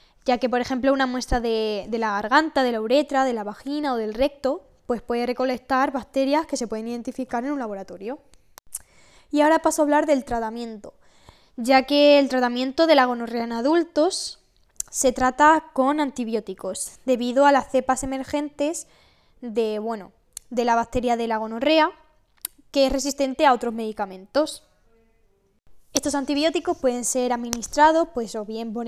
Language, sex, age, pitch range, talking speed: Spanish, female, 10-29, 230-285 Hz, 160 wpm